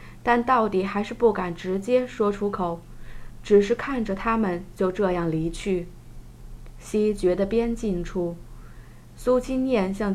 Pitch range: 180-235 Hz